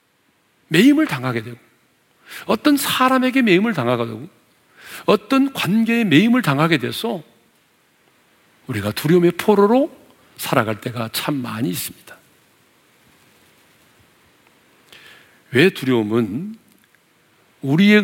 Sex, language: male, Korean